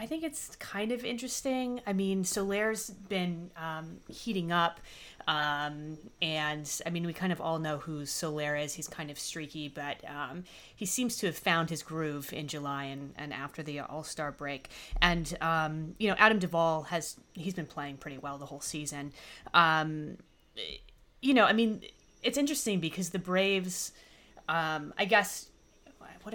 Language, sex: English, female